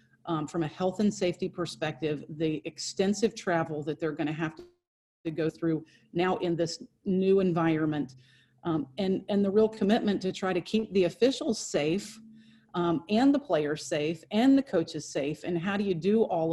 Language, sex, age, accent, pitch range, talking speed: English, female, 40-59, American, 160-185 Hz, 185 wpm